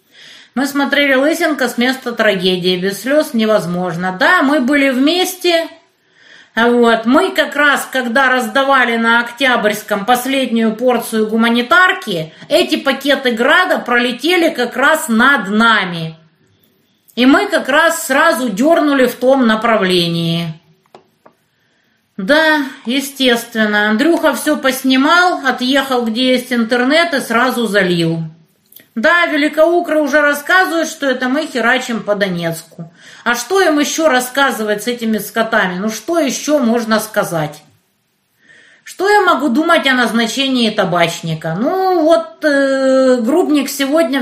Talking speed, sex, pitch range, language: 120 wpm, female, 215-300 Hz, Russian